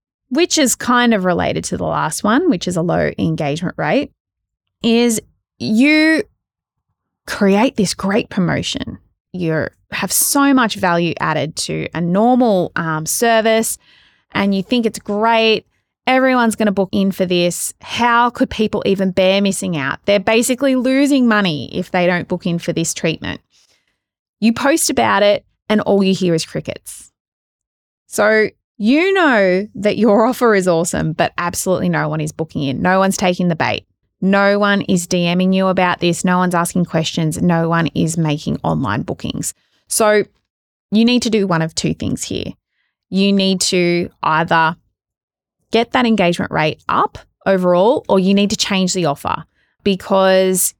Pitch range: 170-220 Hz